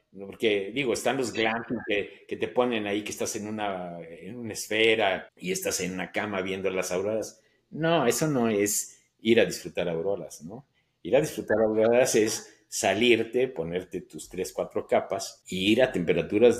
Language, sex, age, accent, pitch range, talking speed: Spanish, male, 50-69, Mexican, 95-130 Hz, 175 wpm